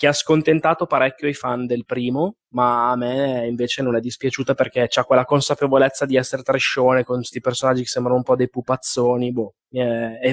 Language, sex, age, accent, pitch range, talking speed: Italian, male, 20-39, native, 125-145 Hz, 190 wpm